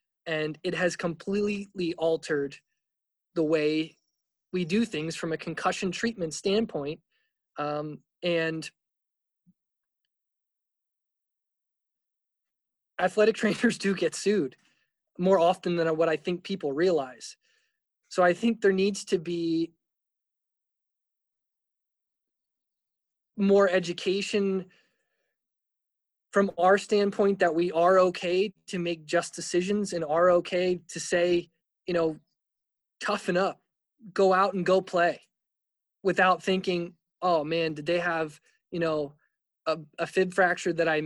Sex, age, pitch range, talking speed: male, 20-39, 165-195 Hz, 115 wpm